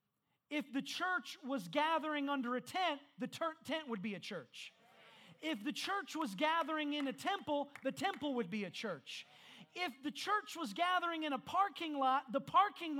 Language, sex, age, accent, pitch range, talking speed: English, male, 40-59, American, 255-320 Hz, 180 wpm